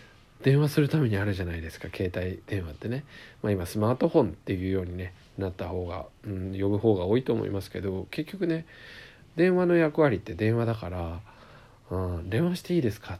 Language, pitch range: Japanese, 95-125 Hz